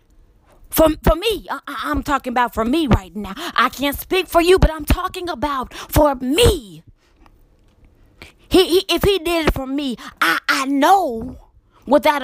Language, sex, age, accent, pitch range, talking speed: English, female, 20-39, American, 200-320 Hz, 165 wpm